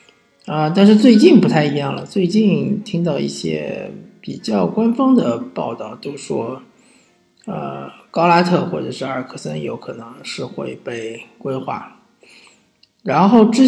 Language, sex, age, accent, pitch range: Chinese, male, 50-69, native, 135-215 Hz